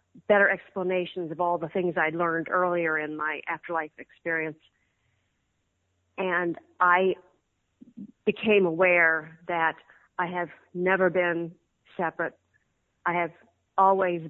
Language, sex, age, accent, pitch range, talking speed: English, female, 40-59, American, 170-205 Hz, 110 wpm